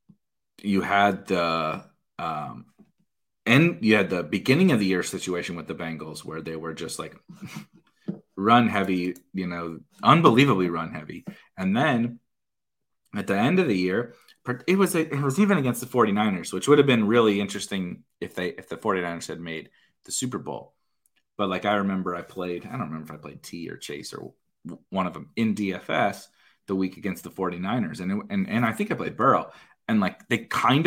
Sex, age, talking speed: male, 30-49, 195 wpm